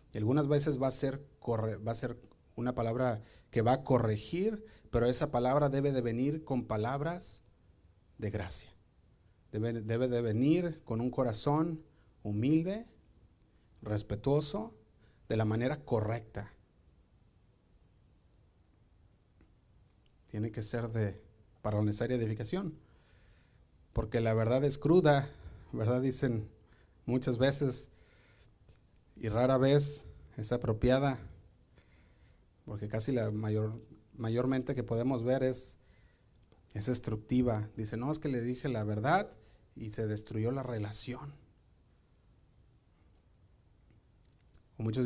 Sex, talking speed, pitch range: male, 115 wpm, 105-130 Hz